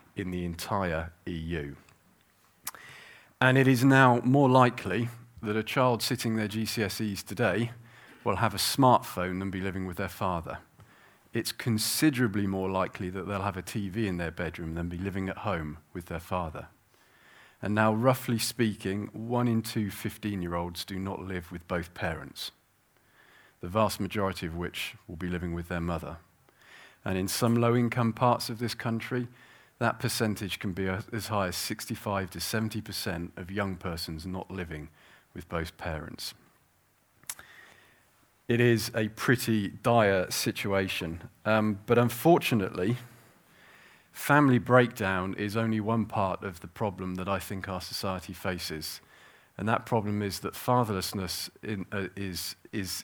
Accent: British